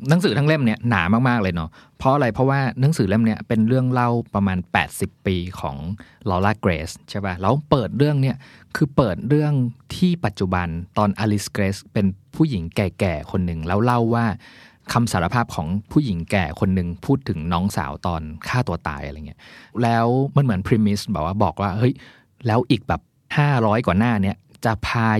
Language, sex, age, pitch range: Thai, male, 20-39, 100-130 Hz